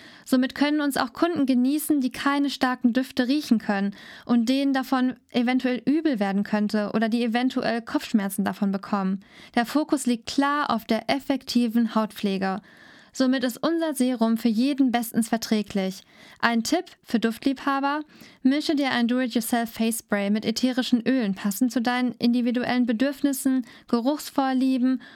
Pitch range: 225-270 Hz